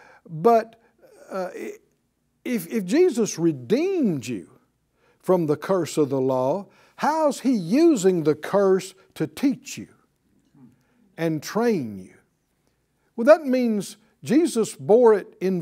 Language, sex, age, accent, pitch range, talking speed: English, male, 60-79, American, 165-245 Hz, 120 wpm